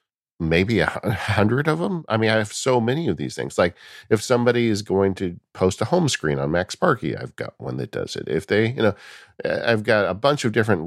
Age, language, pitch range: 50-69, English, 80-110 Hz